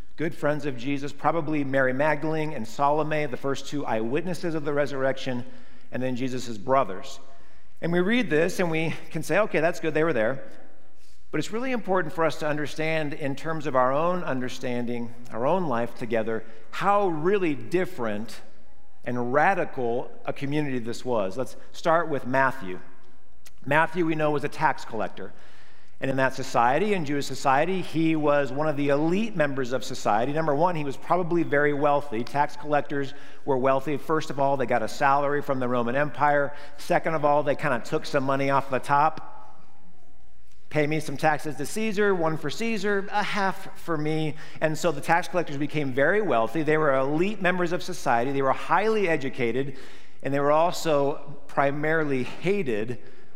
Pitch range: 130-160 Hz